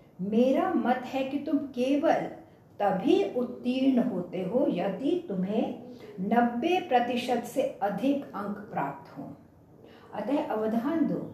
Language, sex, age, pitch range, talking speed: English, female, 60-79, 215-290 Hz, 115 wpm